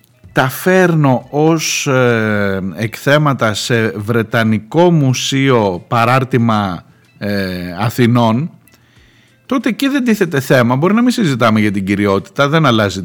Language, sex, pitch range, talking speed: Greek, male, 115-180 Hz, 115 wpm